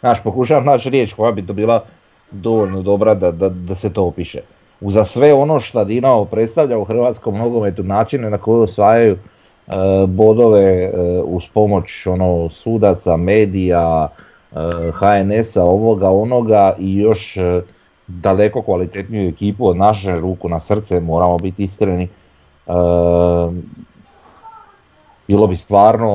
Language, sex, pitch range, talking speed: Croatian, male, 85-105 Hz, 135 wpm